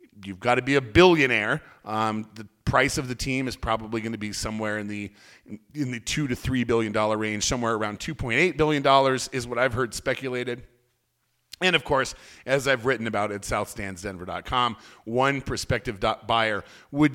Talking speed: 175 wpm